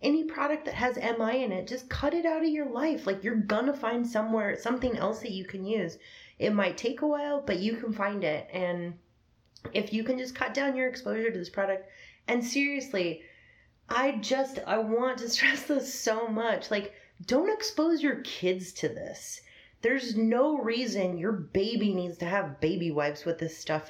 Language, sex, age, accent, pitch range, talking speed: English, female, 30-49, American, 165-235 Hz, 195 wpm